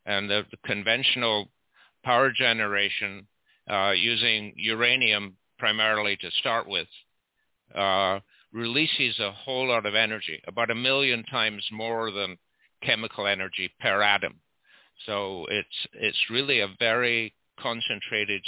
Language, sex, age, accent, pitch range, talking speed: English, male, 60-79, American, 100-115 Hz, 115 wpm